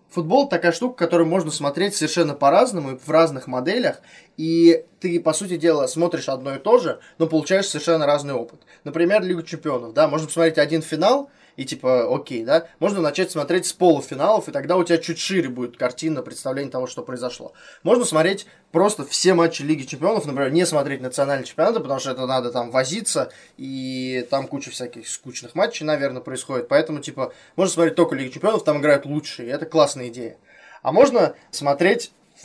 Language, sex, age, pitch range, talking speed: Russian, male, 20-39, 140-175 Hz, 185 wpm